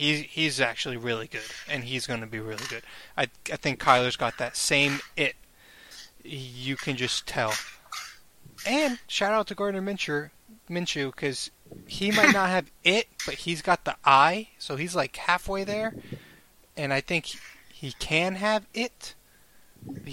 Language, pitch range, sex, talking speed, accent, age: English, 130-165 Hz, male, 150 wpm, American, 20-39